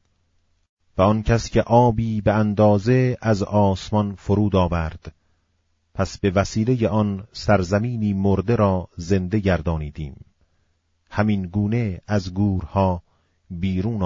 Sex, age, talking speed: male, 40-59, 105 wpm